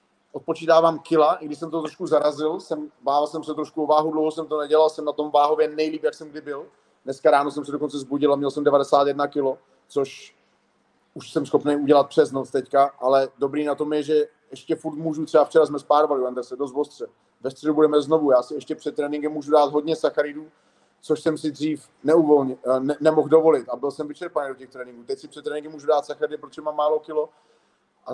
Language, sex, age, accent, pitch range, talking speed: Czech, male, 30-49, native, 145-160 Hz, 215 wpm